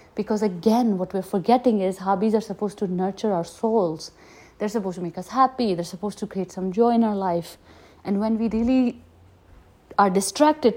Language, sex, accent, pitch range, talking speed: English, female, Indian, 190-275 Hz, 190 wpm